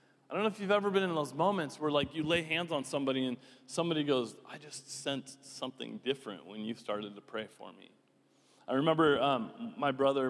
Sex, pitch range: male, 120-165 Hz